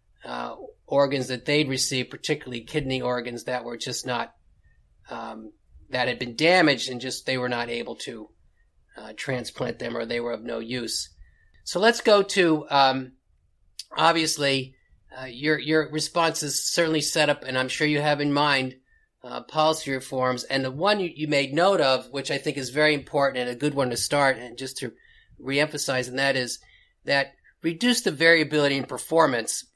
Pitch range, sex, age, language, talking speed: 125-150 Hz, male, 40-59, English, 180 wpm